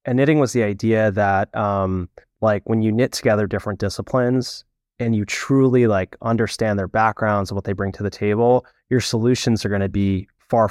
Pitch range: 105-130 Hz